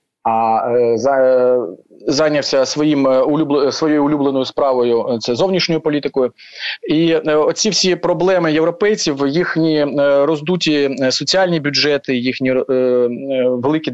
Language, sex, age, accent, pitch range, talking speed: Ukrainian, male, 30-49, native, 130-160 Hz, 110 wpm